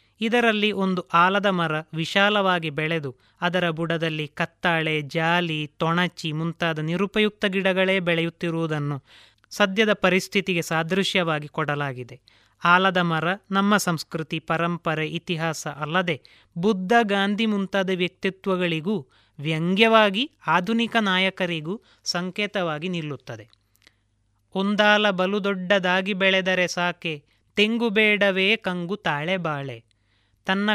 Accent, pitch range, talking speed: native, 160-200 Hz, 90 wpm